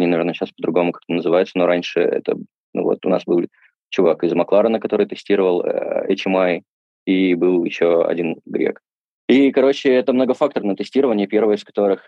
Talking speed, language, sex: 165 wpm, Russian, male